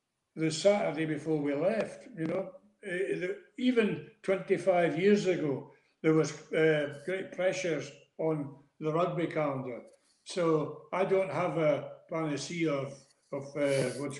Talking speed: 125 wpm